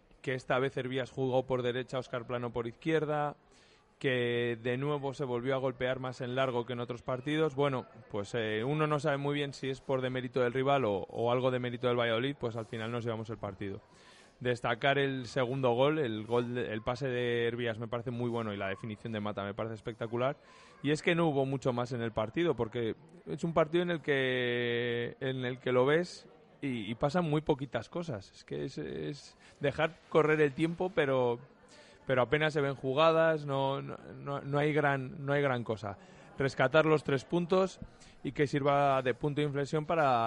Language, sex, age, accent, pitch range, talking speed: Spanish, male, 20-39, Spanish, 120-145 Hz, 210 wpm